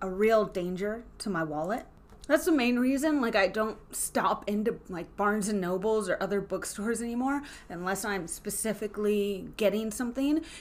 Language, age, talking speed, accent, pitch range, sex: English, 30-49, 160 wpm, American, 195-260 Hz, female